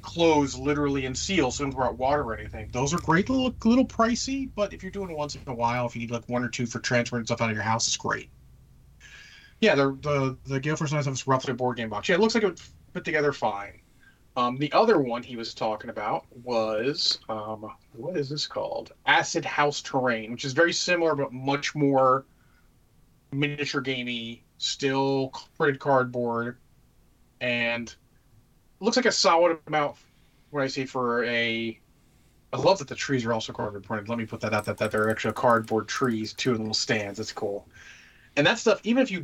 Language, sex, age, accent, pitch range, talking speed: English, male, 30-49, American, 115-145 Hz, 210 wpm